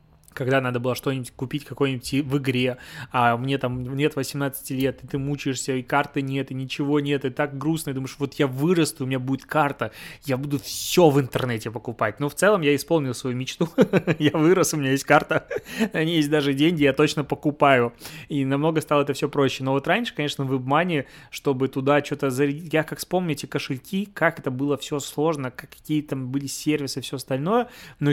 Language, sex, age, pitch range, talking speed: Russian, male, 20-39, 130-155 Hz, 200 wpm